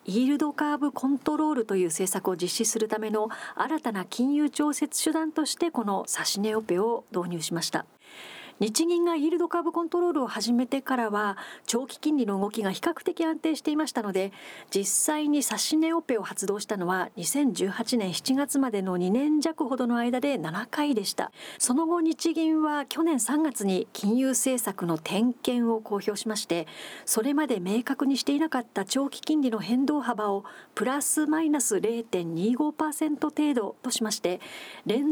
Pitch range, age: 210-295 Hz, 40-59